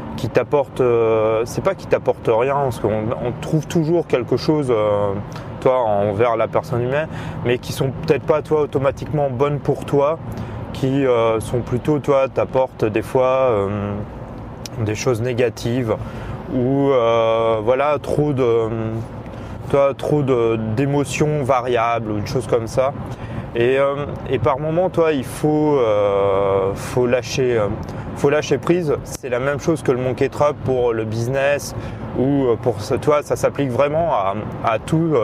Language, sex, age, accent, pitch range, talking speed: French, male, 20-39, French, 115-140 Hz, 155 wpm